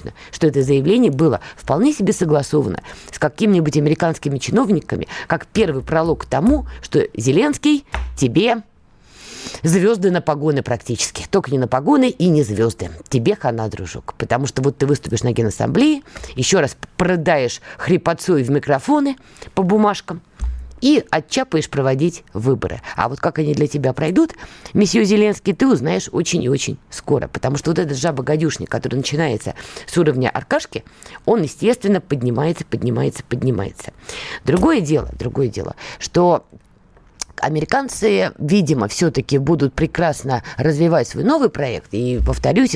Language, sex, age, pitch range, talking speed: Russian, female, 20-39, 130-180 Hz, 140 wpm